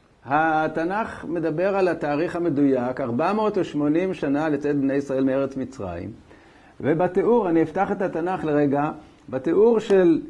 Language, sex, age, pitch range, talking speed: Hebrew, male, 60-79, 145-195 Hz, 115 wpm